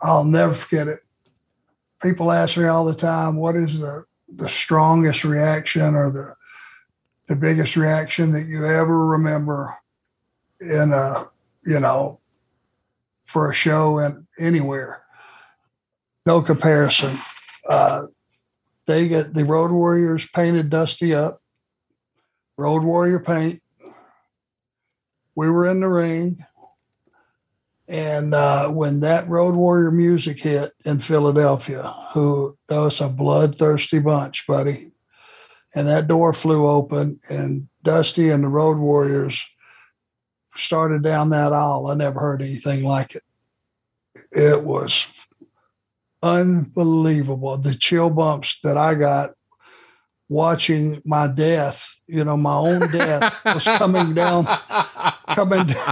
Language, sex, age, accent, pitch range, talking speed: English, male, 60-79, American, 145-165 Hz, 120 wpm